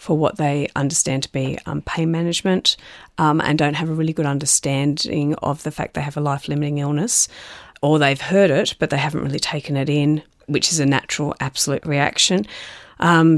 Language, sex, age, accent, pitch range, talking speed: English, female, 40-59, Australian, 145-165 Hz, 195 wpm